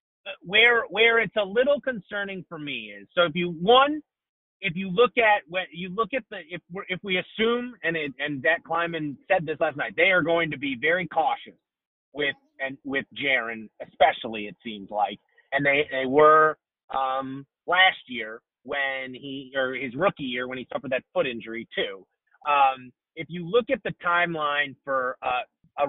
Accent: American